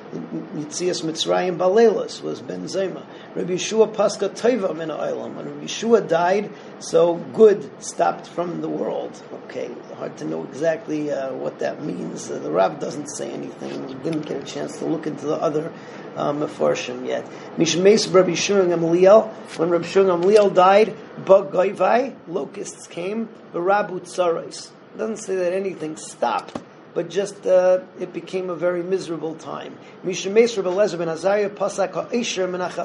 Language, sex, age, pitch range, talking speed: English, male, 40-59, 170-200 Hz, 115 wpm